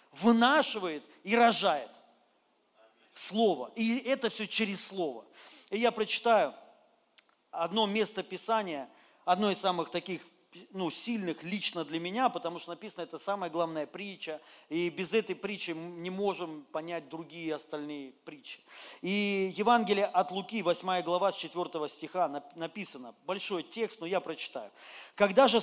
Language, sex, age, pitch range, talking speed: Russian, male, 40-59, 165-215 Hz, 135 wpm